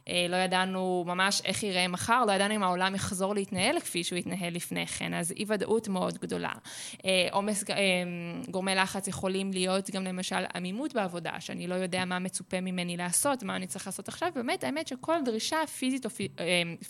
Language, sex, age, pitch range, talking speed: Hebrew, female, 20-39, 185-255 Hz, 175 wpm